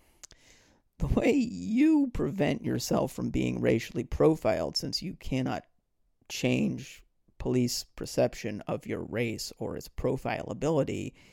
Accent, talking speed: American, 110 wpm